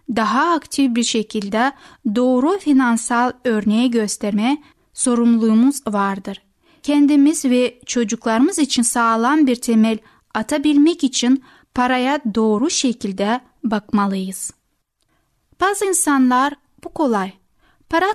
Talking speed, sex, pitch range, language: 95 wpm, female, 220-280 Hz, Turkish